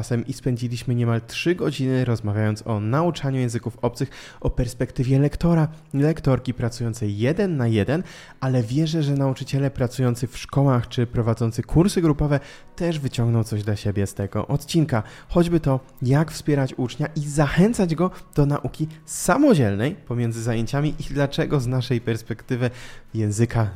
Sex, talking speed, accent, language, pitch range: male, 140 wpm, native, Polish, 115-145 Hz